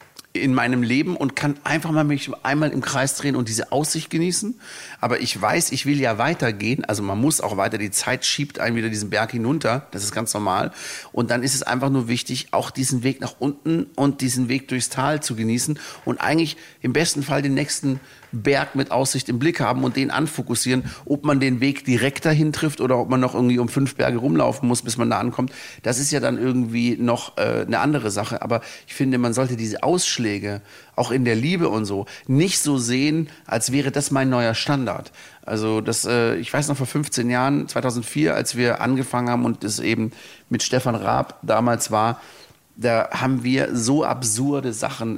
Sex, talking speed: male, 205 wpm